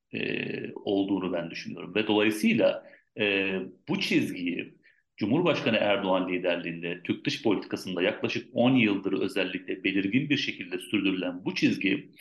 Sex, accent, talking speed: male, native, 120 wpm